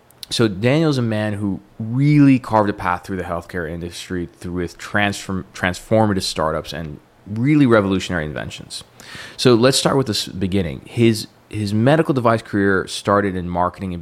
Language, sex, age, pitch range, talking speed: English, male, 20-39, 90-115 Hz, 160 wpm